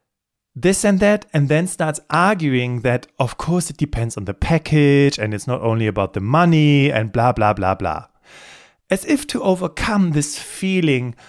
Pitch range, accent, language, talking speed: 130-180 Hz, German, German, 175 wpm